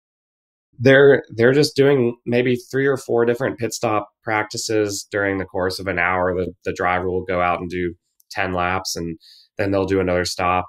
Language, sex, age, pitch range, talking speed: English, male, 20-39, 85-100 Hz, 190 wpm